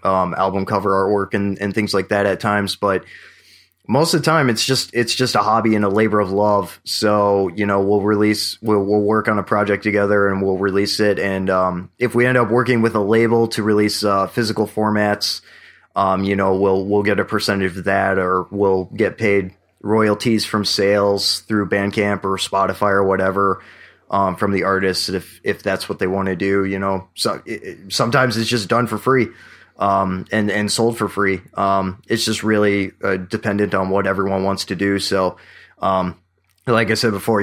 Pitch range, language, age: 95-110 Hz, English, 20-39